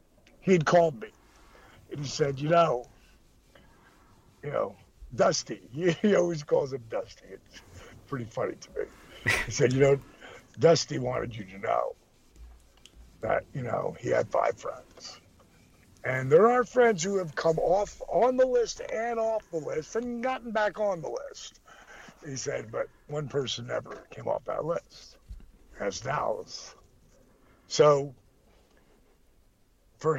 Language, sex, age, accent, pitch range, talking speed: English, male, 60-79, American, 145-225 Hz, 145 wpm